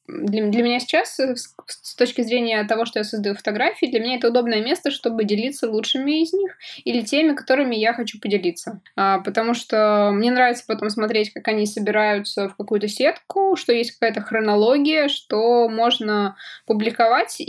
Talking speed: 170 wpm